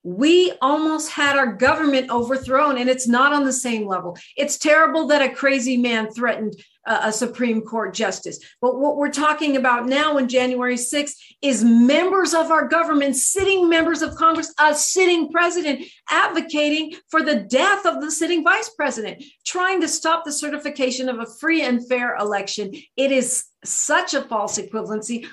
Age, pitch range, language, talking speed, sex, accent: 50-69, 220-295 Hz, English, 170 wpm, female, American